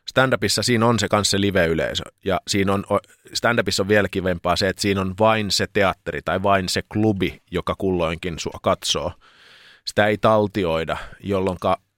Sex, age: male, 30-49